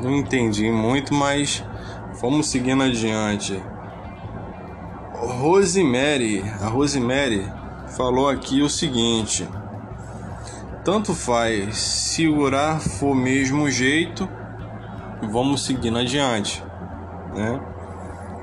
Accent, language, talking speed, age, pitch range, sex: Brazilian, Portuguese, 80 wpm, 20-39, 95-145 Hz, male